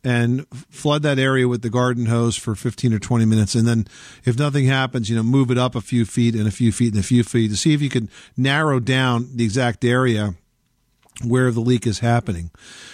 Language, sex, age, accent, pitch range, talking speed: English, male, 50-69, American, 110-130 Hz, 225 wpm